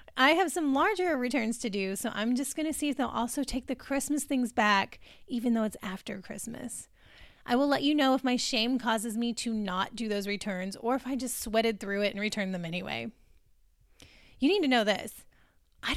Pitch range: 210-275 Hz